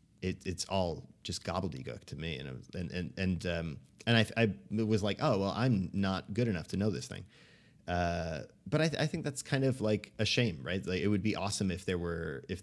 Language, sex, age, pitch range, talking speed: English, male, 30-49, 90-105 Hz, 240 wpm